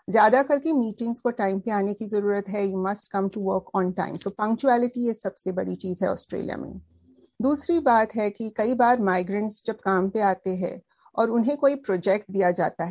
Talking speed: 195 wpm